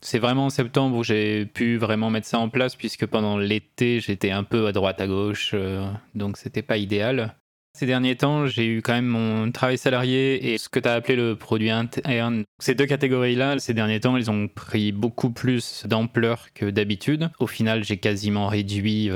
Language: French